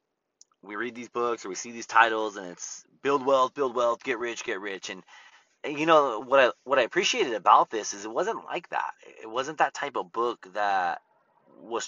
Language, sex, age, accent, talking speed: English, male, 30-49, American, 210 wpm